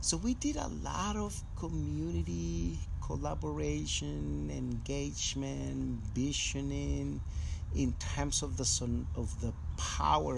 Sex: male